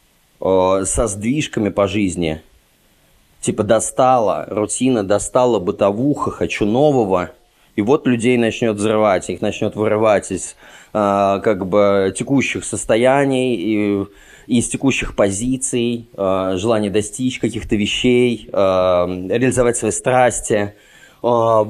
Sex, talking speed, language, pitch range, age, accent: male, 110 wpm, Russian, 100-120 Hz, 20-39, native